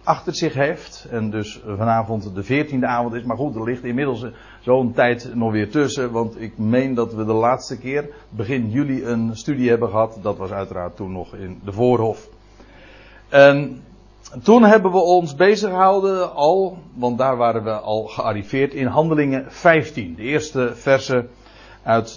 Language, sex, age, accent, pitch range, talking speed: Dutch, male, 50-69, Dutch, 115-150 Hz, 170 wpm